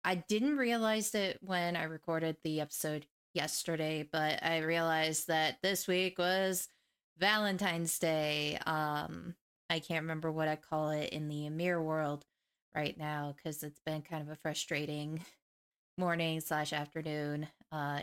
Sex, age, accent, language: female, 20-39, American, English